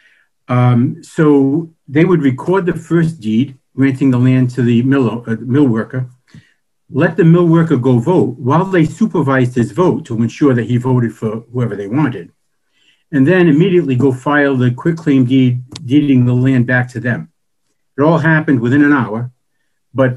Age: 60-79